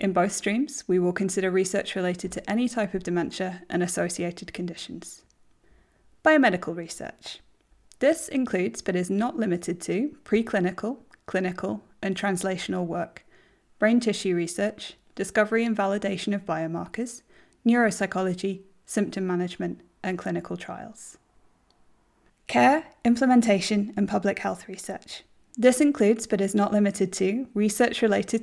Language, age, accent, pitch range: English, 20-39, British, 180-220 Hz